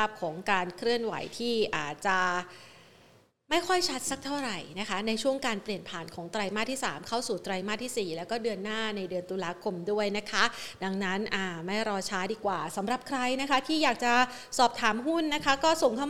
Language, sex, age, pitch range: Thai, female, 30-49, 195-250 Hz